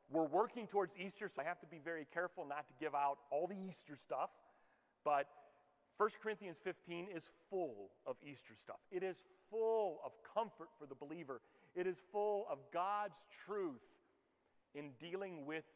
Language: English